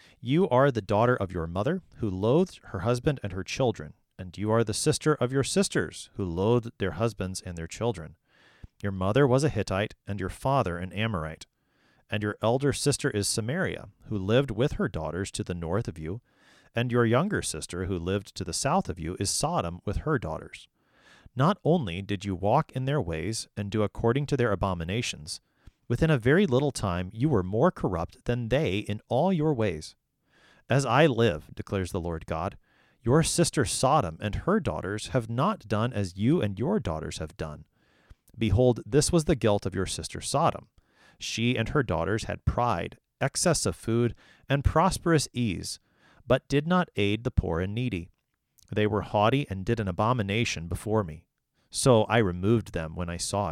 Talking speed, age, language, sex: 190 wpm, 40-59, English, male